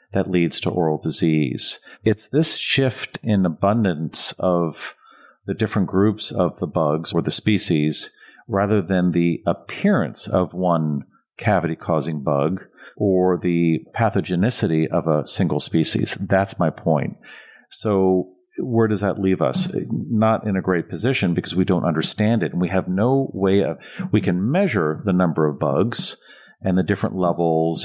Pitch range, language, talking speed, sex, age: 80-105 Hz, English, 155 wpm, male, 50-69